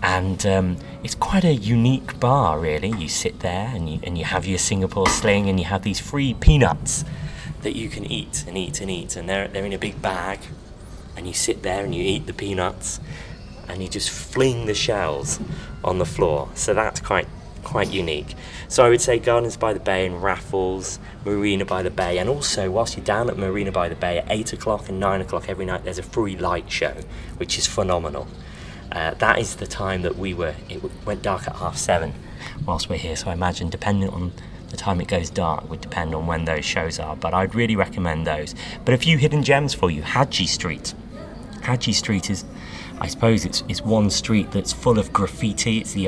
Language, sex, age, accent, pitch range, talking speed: English, male, 30-49, British, 90-105 Hz, 215 wpm